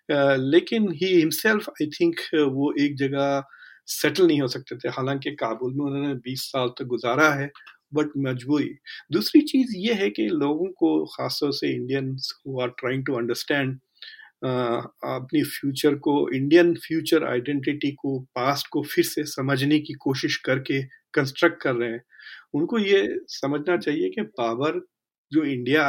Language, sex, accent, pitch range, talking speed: Hindi, male, native, 135-175 Hz, 155 wpm